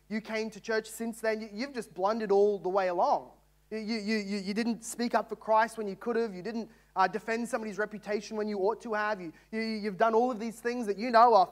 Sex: male